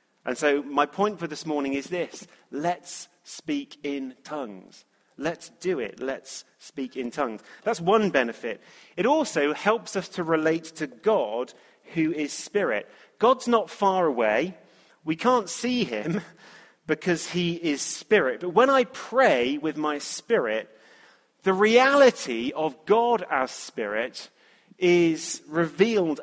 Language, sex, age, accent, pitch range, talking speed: English, male, 30-49, British, 150-210 Hz, 140 wpm